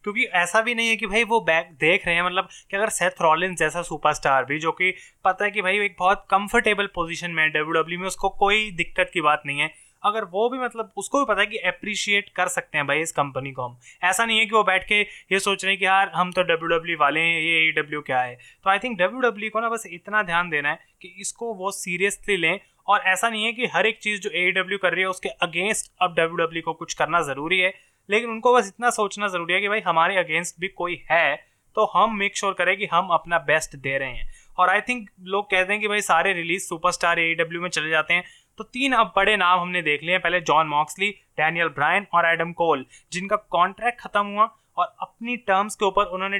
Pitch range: 165-205 Hz